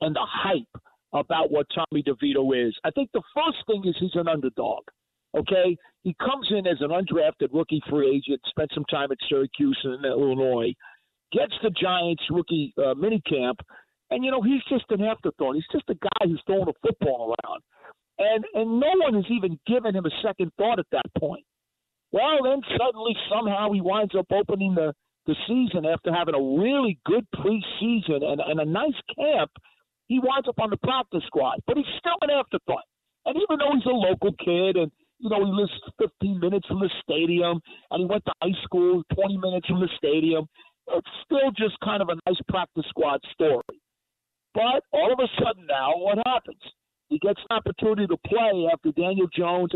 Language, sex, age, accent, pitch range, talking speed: English, male, 50-69, American, 165-230 Hz, 195 wpm